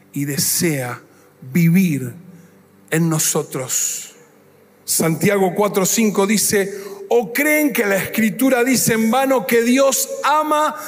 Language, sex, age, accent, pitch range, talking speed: Spanish, male, 40-59, Argentinian, 175-245 Hz, 105 wpm